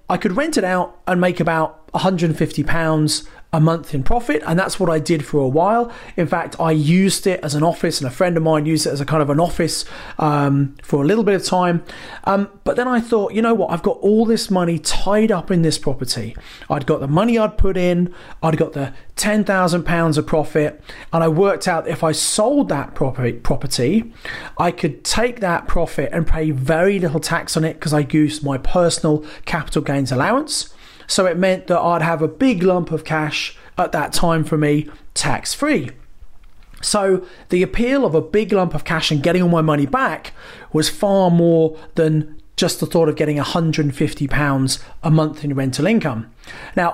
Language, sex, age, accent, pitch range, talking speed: English, male, 30-49, British, 150-185 Hz, 210 wpm